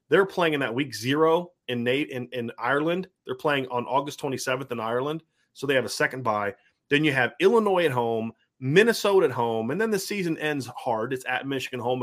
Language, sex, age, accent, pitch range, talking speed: English, male, 30-49, American, 120-165 Hz, 215 wpm